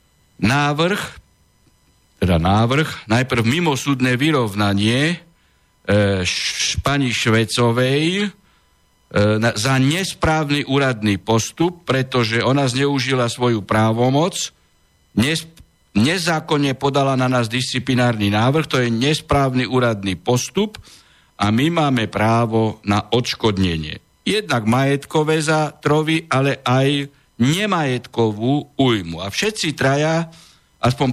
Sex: male